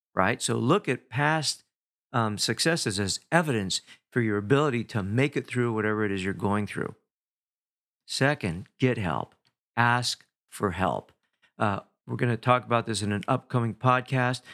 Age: 50-69